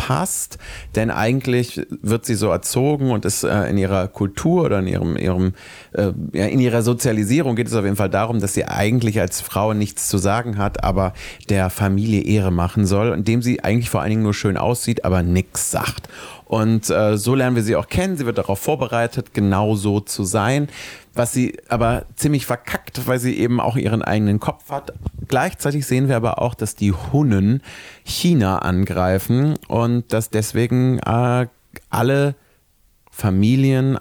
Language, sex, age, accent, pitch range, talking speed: German, male, 30-49, German, 100-120 Hz, 170 wpm